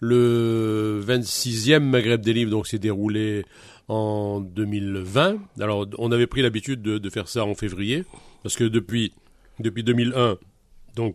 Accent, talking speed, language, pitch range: French, 145 wpm, French, 100-120 Hz